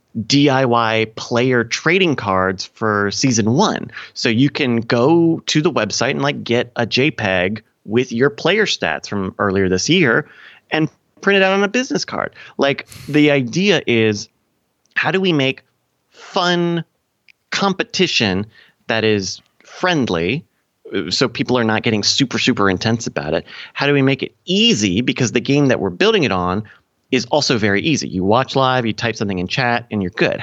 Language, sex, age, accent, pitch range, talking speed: English, male, 30-49, American, 105-145 Hz, 170 wpm